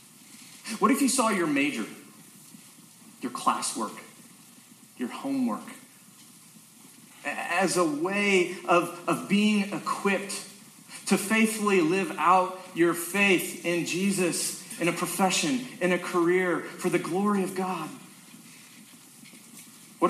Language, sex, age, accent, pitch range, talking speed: English, male, 30-49, American, 180-245 Hz, 110 wpm